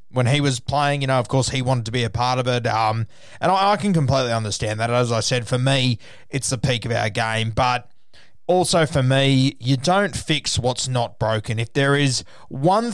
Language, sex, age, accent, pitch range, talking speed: English, male, 20-39, Australian, 120-145 Hz, 225 wpm